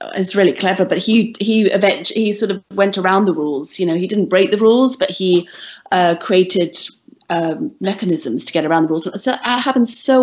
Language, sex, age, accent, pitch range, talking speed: English, female, 40-59, British, 170-210 Hz, 210 wpm